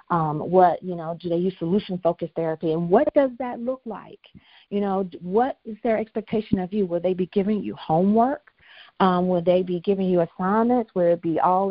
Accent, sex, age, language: American, female, 40-59, English